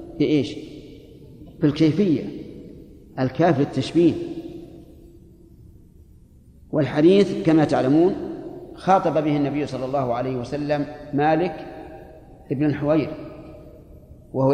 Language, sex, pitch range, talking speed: Arabic, male, 135-160 Hz, 85 wpm